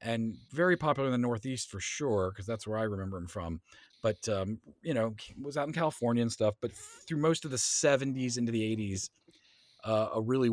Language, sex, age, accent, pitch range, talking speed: English, male, 40-59, American, 105-135 Hz, 210 wpm